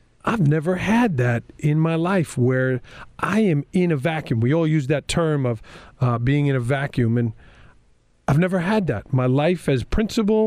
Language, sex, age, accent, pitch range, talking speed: English, male, 40-59, American, 125-185 Hz, 190 wpm